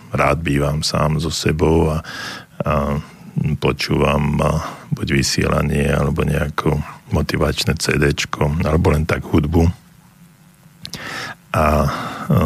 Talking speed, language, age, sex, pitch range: 95 wpm, Slovak, 50-69, male, 75-85 Hz